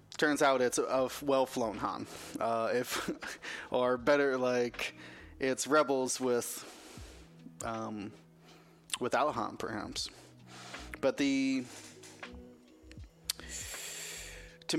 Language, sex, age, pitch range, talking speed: English, male, 20-39, 115-135 Hz, 90 wpm